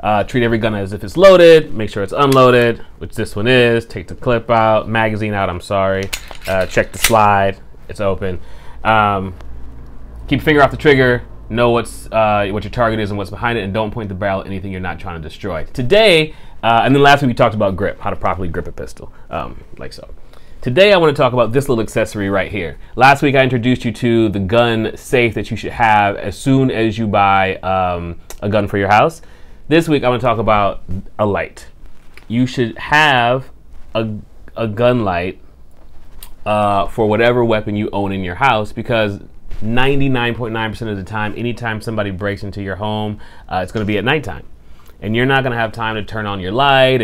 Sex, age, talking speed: male, 30-49, 210 wpm